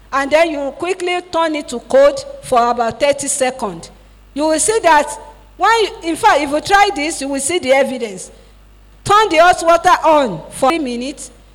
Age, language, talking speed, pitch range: 50-69, English, 180 wpm, 255-330 Hz